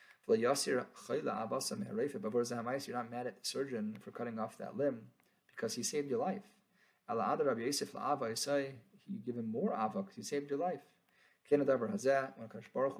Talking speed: 135 wpm